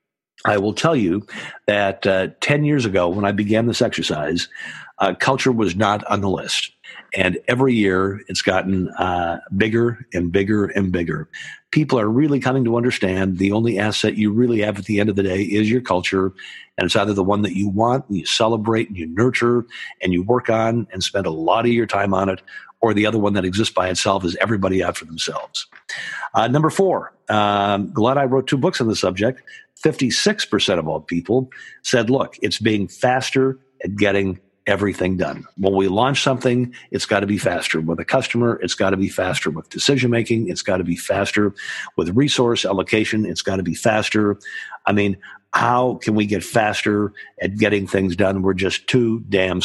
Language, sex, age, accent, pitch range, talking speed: English, male, 50-69, American, 95-120 Hz, 200 wpm